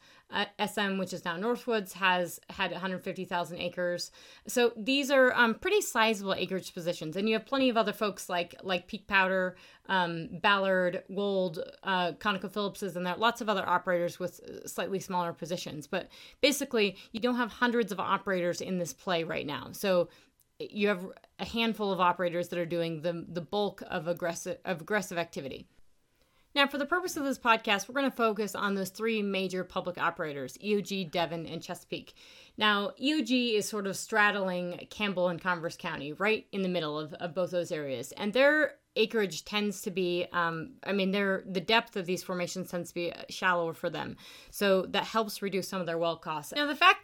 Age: 30-49